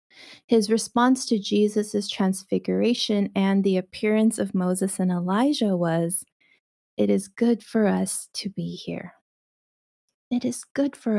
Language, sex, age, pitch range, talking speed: English, female, 20-39, 180-235 Hz, 135 wpm